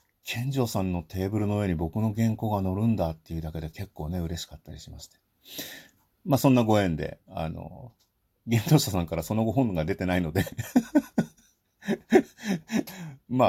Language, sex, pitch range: Japanese, male, 85-130 Hz